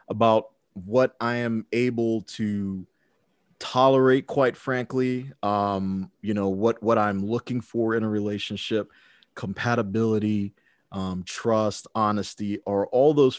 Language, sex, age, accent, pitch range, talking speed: English, male, 30-49, American, 100-120 Hz, 120 wpm